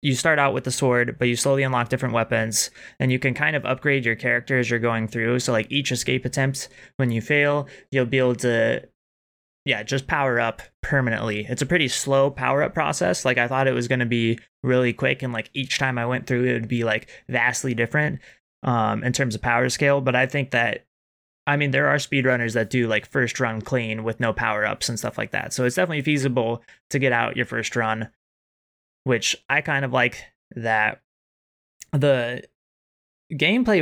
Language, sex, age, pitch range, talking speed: English, male, 20-39, 120-140 Hz, 205 wpm